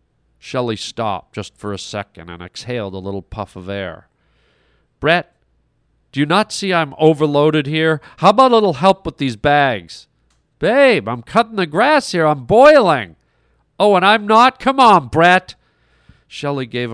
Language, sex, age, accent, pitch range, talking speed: English, male, 40-59, American, 95-145 Hz, 165 wpm